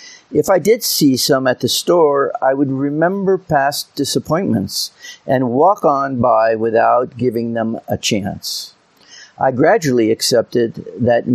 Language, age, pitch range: English, 50-69, 120-150 Hz